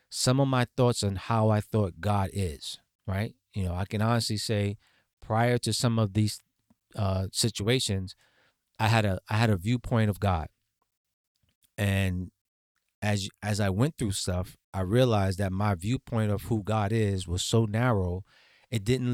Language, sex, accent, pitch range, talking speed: English, male, American, 95-115 Hz, 170 wpm